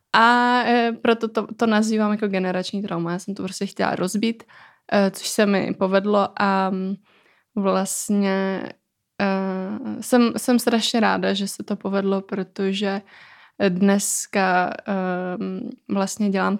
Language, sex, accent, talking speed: Czech, female, native, 115 wpm